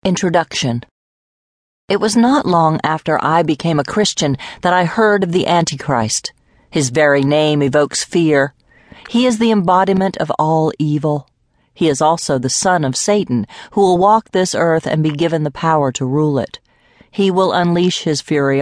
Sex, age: female, 40-59